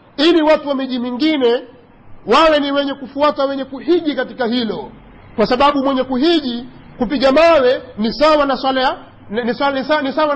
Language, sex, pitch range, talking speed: Swahili, male, 235-285 Hz, 145 wpm